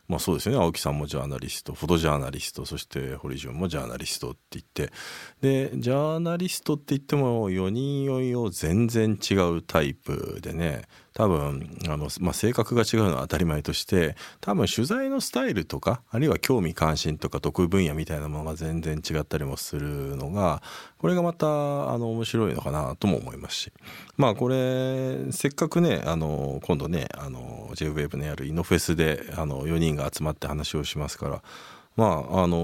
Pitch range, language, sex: 75-125 Hz, Japanese, male